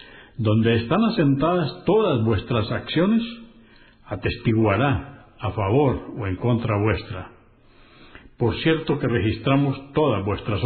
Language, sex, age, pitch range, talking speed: Spanish, male, 60-79, 110-140 Hz, 105 wpm